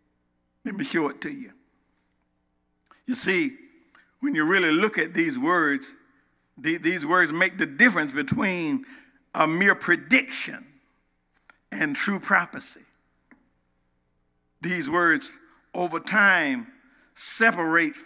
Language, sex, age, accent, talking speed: English, male, 60-79, American, 105 wpm